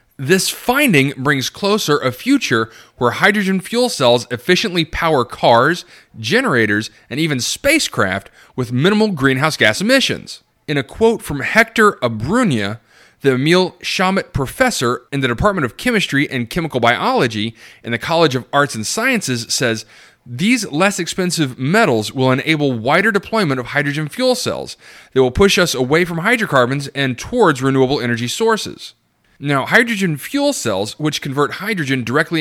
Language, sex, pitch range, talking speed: English, male, 125-190 Hz, 150 wpm